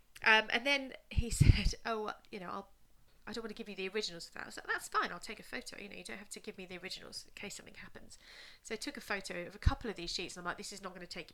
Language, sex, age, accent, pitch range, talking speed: English, female, 30-49, British, 175-225 Hz, 325 wpm